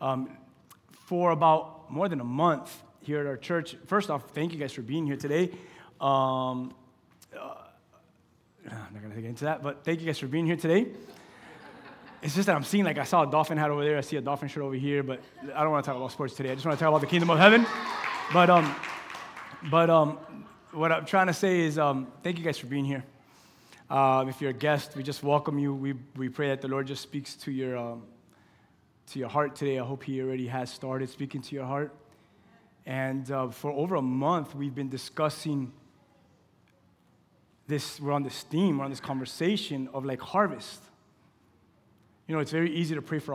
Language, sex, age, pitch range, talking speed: English, male, 20-39, 135-170 Hz, 215 wpm